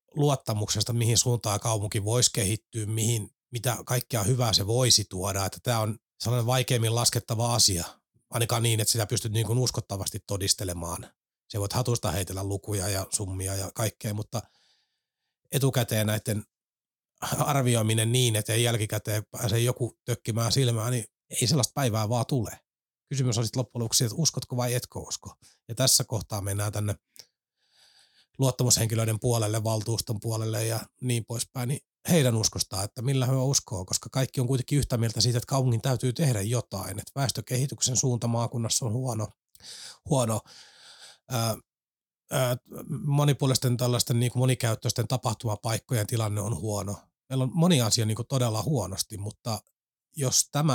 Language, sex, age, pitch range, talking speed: Finnish, male, 30-49, 105-125 Hz, 145 wpm